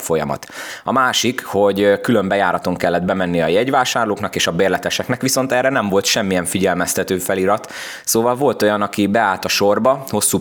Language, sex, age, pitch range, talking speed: Hungarian, male, 20-39, 90-110 Hz, 155 wpm